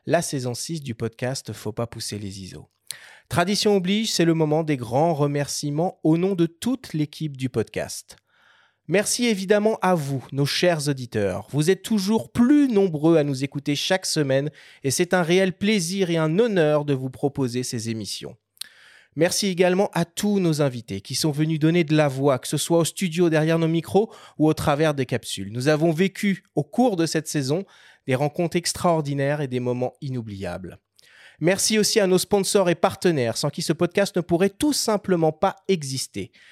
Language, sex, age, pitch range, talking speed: French, male, 30-49, 135-185 Hz, 185 wpm